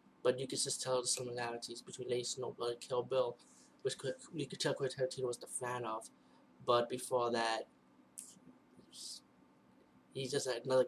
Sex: male